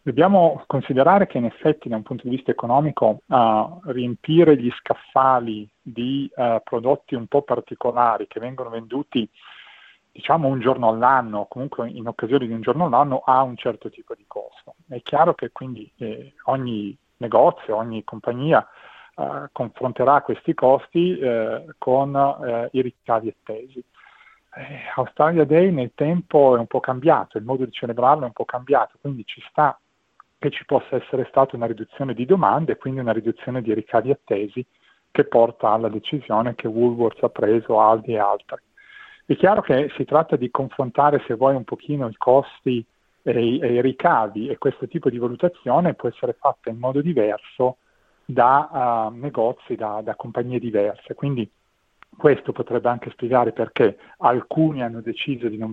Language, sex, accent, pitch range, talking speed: Italian, male, native, 115-140 Hz, 160 wpm